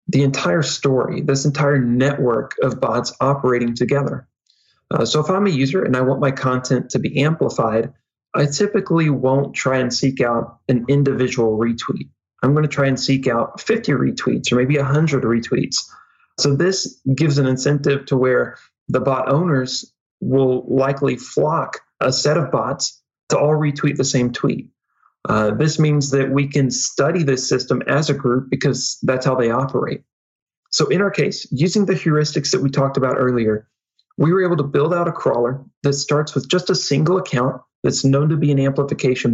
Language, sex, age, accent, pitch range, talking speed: English, male, 30-49, American, 130-150 Hz, 180 wpm